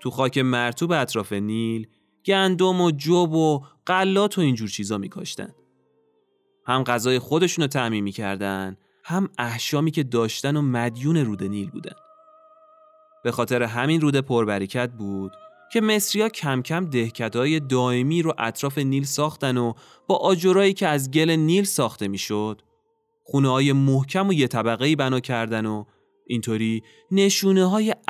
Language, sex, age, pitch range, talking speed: Persian, male, 20-39, 110-180 Hz, 140 wpm